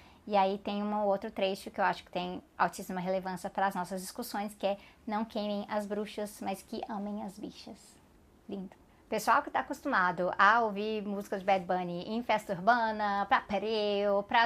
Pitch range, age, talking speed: 205-250 Hz, 20-39, 185 wpm